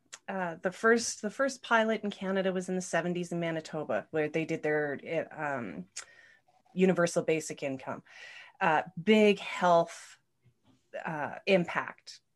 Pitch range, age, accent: 170-225 Hz, 30-49, American